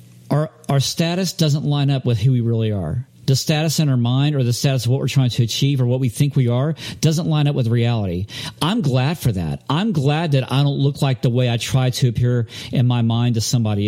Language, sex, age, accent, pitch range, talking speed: English, male, 50-69, American, 120-155 Hz, 250 wpm